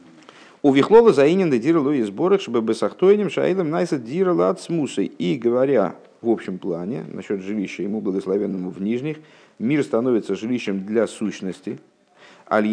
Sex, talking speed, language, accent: male, 145 wpm, Russian, native